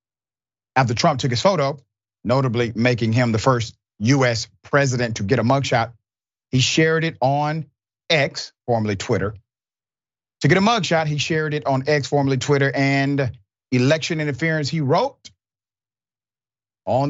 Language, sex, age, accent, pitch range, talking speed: English, male, 40-59, American, 110-145 Hz, 140 wpm